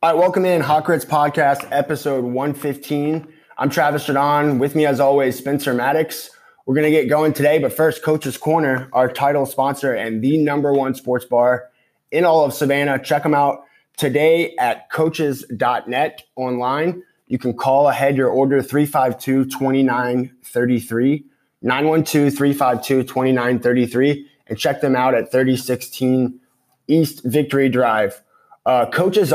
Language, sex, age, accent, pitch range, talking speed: English, male, 20-39, American, 130-150 Hz, 135 wpm